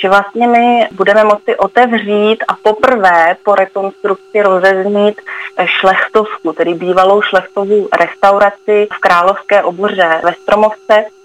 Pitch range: 180-200 Hz